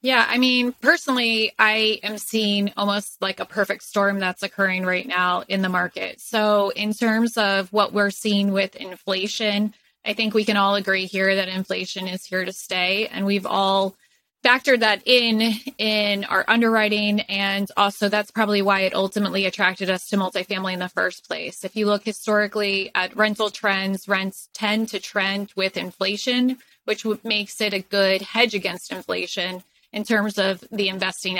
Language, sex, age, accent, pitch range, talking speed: English, female, 20-39, American, 195-220 Hz, 175 wpm